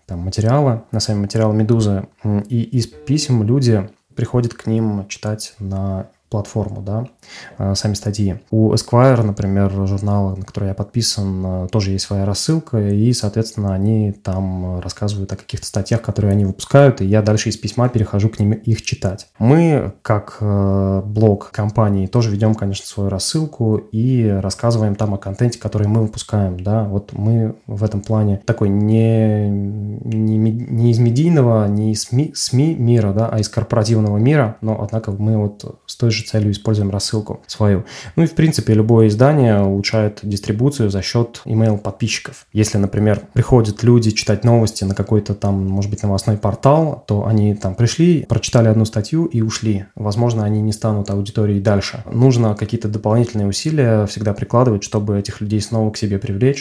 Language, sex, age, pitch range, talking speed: Russian, male, 20-39, 100-115 Hz, 165 wpm